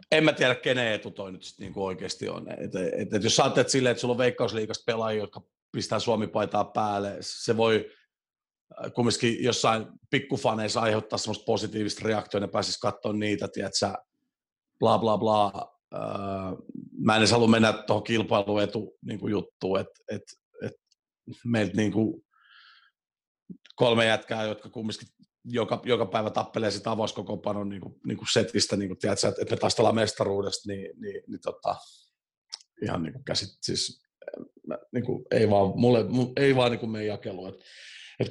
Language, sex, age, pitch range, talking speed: Finnish, male, 40-59, 105-125 Hz, 145 wpm